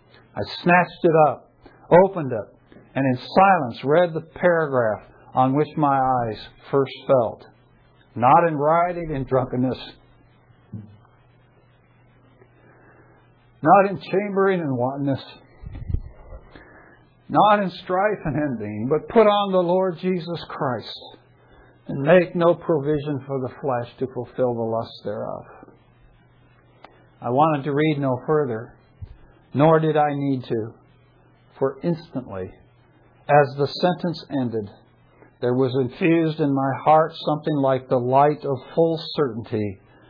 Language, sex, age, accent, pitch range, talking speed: English, male, 60-79, American, 125-165 Hz, 125 wpm